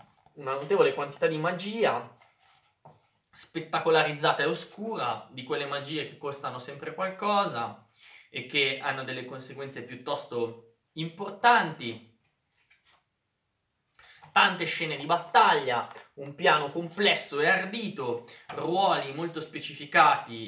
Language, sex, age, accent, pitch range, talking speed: Italian, male, 20-39, native, 125-170 Hz, 100 wpm